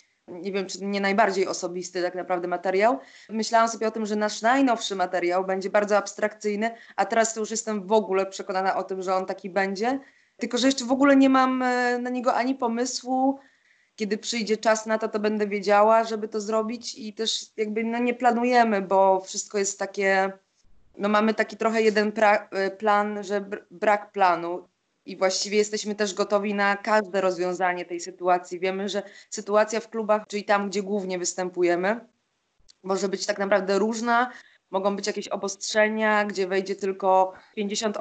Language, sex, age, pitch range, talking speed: Polish, female, 20-39, 190-220 Hz, 170 wpm